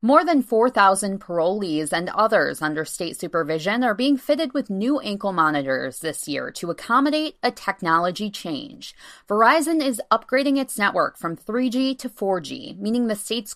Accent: American